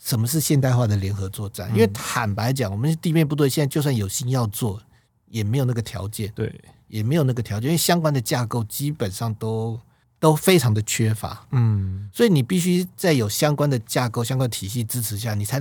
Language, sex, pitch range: Chinese, male, 110-145 Hz